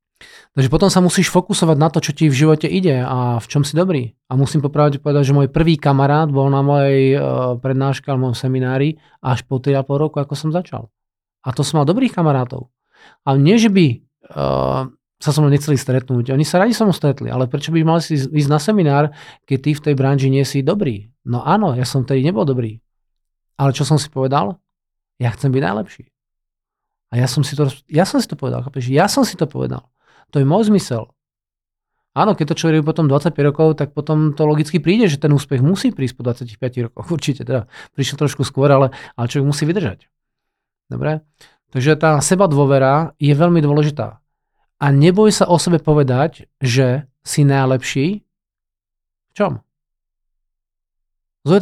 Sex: male